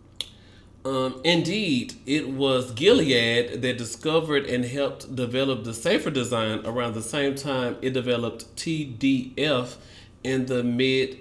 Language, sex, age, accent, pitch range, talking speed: English, male, 30-49, American, 110-140 Hz, 125 wpm